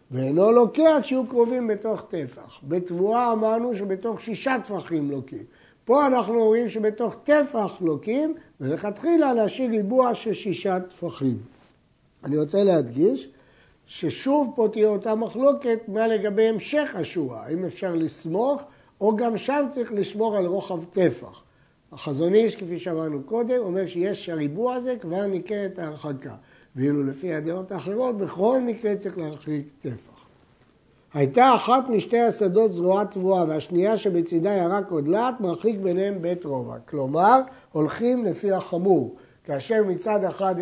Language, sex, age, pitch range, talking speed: Hebrew, male, 60-79, 165-225 Hz, 135 wpm